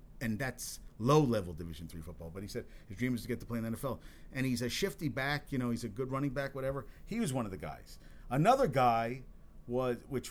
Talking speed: 245 wpm